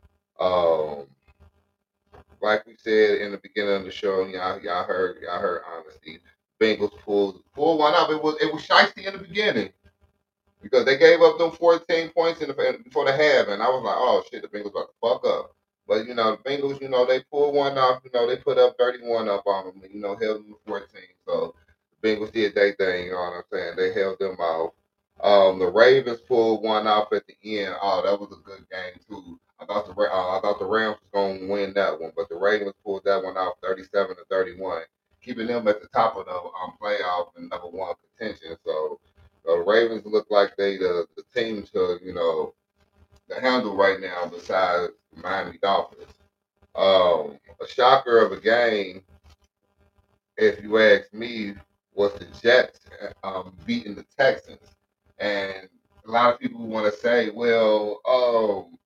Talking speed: 195 wpm